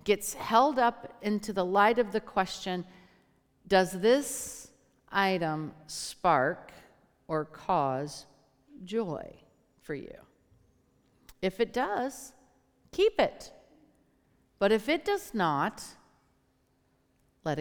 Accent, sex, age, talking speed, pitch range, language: American, female, 50-69, 100 wpm, 175-245 Hz, English